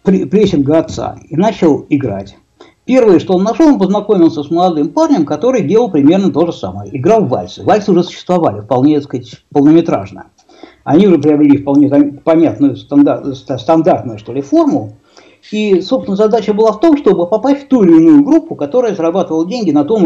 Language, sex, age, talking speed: Russian, male, 60-79, 175 wpm